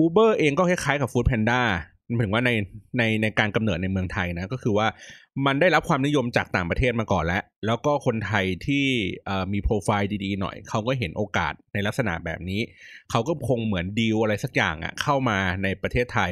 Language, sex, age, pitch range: Thai, male, 20-39, 100-135 Hz